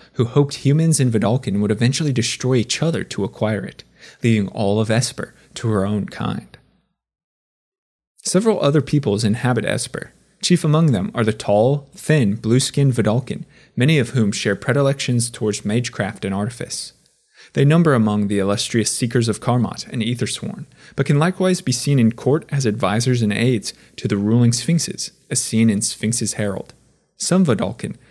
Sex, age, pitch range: male, 20-39, 110-140 Hz